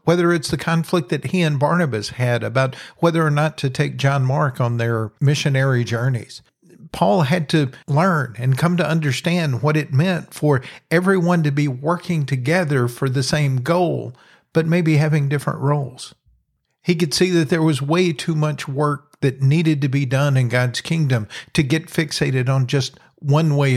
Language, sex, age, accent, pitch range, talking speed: English, male, 50-69, American, 130-160 Hz, 180 wpm